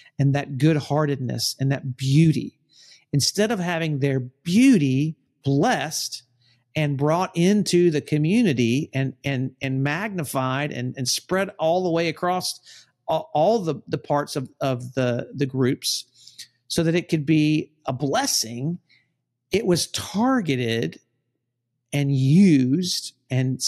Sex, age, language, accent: male, 50-69, English, American